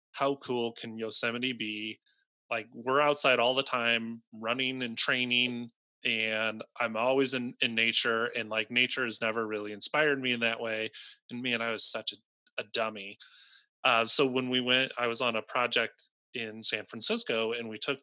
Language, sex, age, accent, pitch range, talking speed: English, male, 20-39, American, 115-145 Hz, 185 wpm